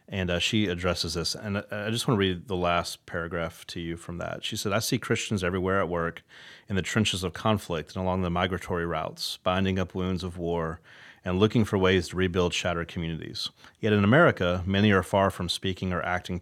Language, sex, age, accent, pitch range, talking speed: English, male, 30-49, American, 85-100 Hz, 215 wpm